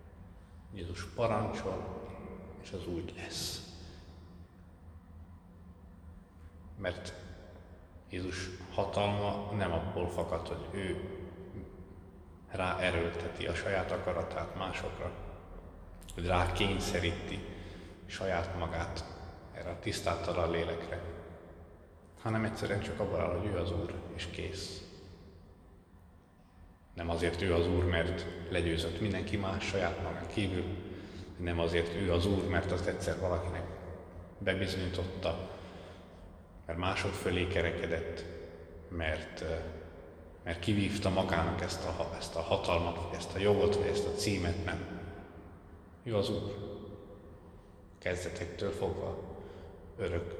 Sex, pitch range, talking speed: male, 85-95 Hz, 105 wpm